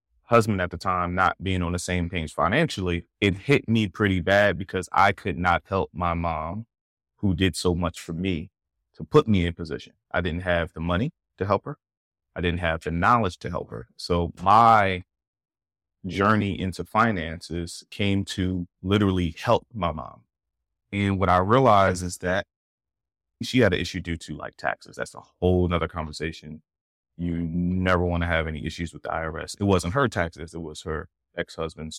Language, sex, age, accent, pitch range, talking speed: English, male, 30-49, American, 85-95 Hz, 185 wpm